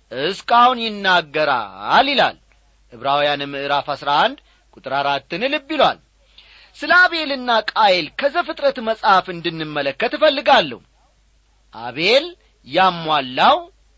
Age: 40-59